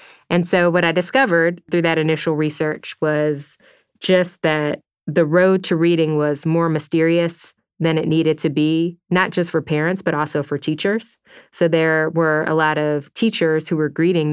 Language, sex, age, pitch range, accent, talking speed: English, female, 30-49, 150-170 Hz, American, 175 wpm